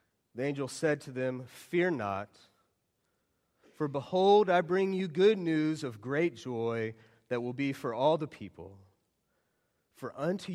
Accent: American